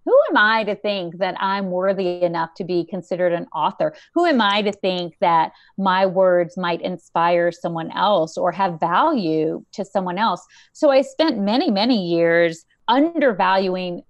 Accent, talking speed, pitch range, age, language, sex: American, 165 wpm, 185-270 Hz, 40-59, English, female